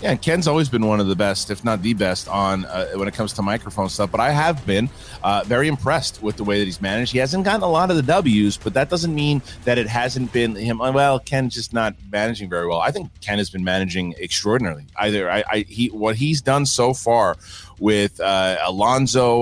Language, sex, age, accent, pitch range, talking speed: English, male, 30-49, American, 100-135 Hz, 235 wpm